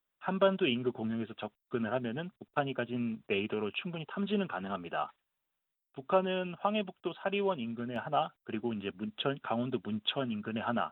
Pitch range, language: 115-180 Hz, Korean